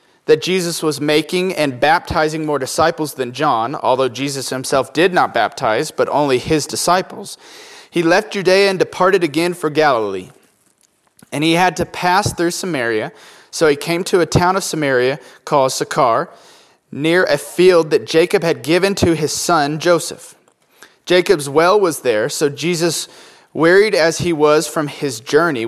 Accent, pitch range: American, 140-175 Hz